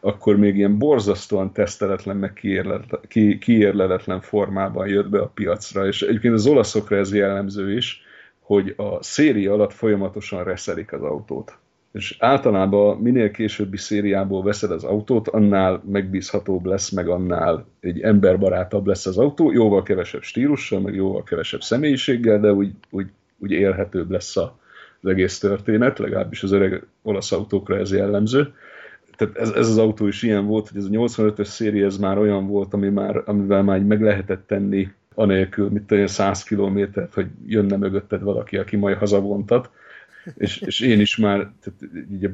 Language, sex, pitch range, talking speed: Hungarian, male, 95-105 Hz, 155 wpm